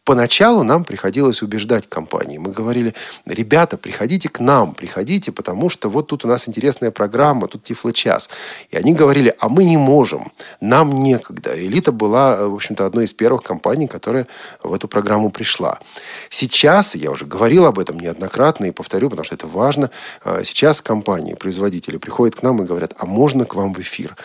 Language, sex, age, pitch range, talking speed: Russian, male, 40-59, 105-145 Hz, 175 wpm